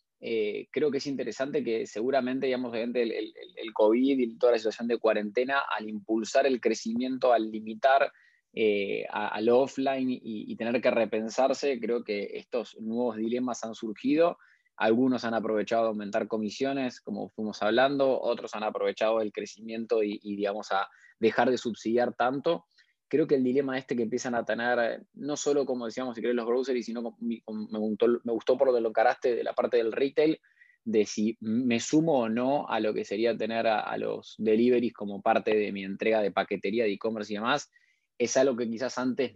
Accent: Argentinian